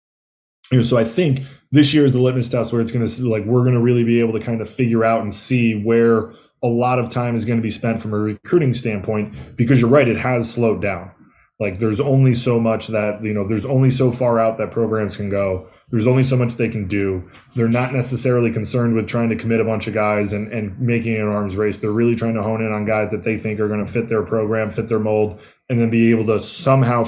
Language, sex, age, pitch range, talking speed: English, male, 20-39, 105-120 Hz, 255 wpm